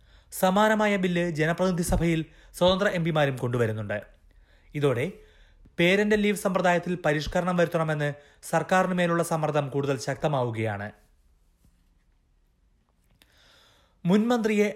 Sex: male